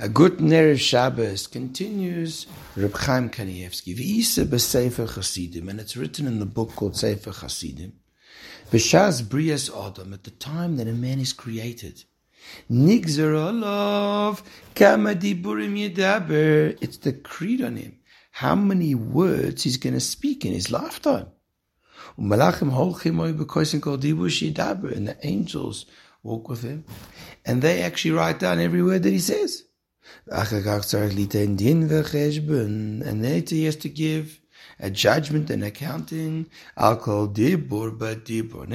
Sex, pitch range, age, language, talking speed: male, 110-160 Hz, 60-79, English, 120 wpm